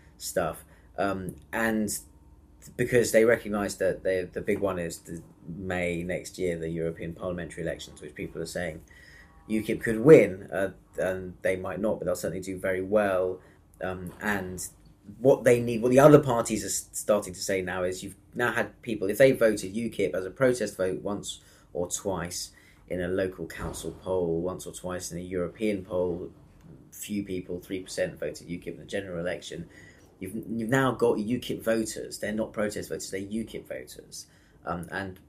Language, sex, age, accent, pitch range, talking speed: English, male, 30-49, British, 90-105 Hz, 180 wpm